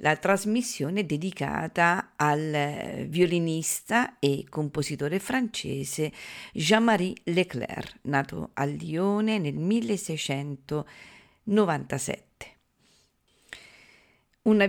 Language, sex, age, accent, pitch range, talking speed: Italian, female, 50-69, native, 155-205 Hz, 65 wpm